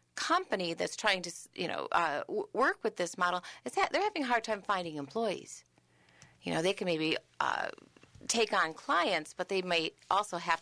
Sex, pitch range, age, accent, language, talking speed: female, 180-230 Hz, 40-59, American, English, 190 wpm